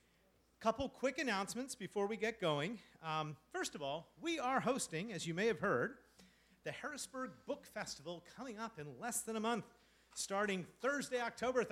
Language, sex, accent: English, male, American